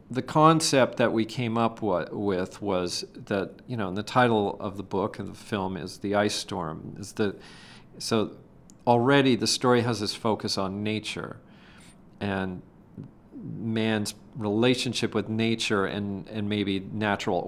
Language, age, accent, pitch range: English, 40-59, American, 100-120 Hz